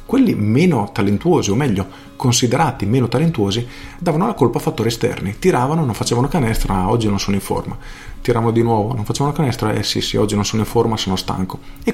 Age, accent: 40-59, native